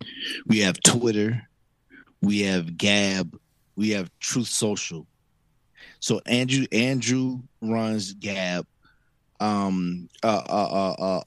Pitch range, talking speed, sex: 100-120 Hz, 105 wpm, male